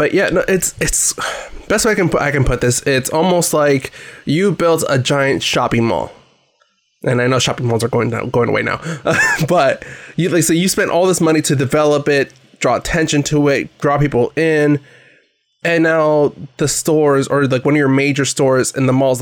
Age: 20-39